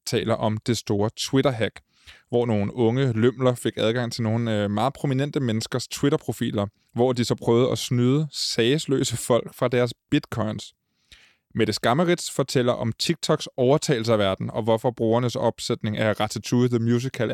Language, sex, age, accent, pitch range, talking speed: Danish, male, 20-39, native, 110-135 Hz, 155 wpm